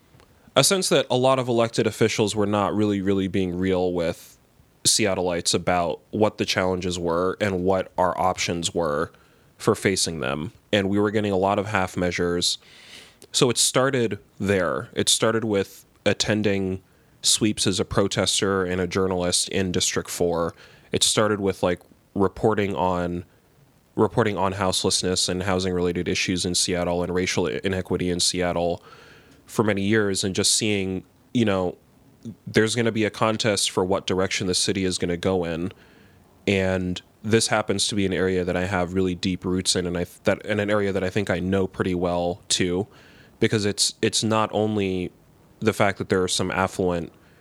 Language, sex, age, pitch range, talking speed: English, male, 20-39, 90-105 Hz, 175 wpm